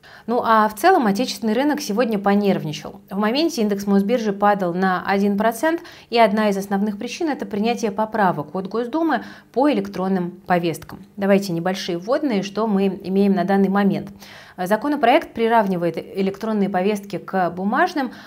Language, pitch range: Russian, 180-230 Hz